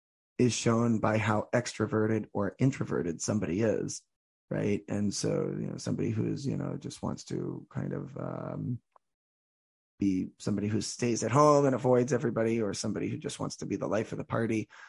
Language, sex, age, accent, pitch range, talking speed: English, male, 20-39, American, 105-120 Hz, 185 wpm